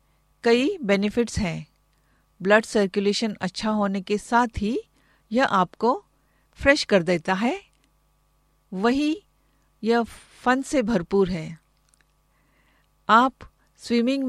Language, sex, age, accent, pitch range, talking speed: Hindi, female, 50-69, native, 195-250 Hz, 100 wpm